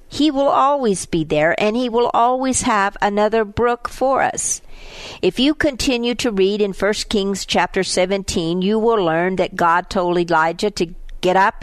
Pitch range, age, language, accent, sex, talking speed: 170-215 Hz, 50-69, English, American, female, 175 wpm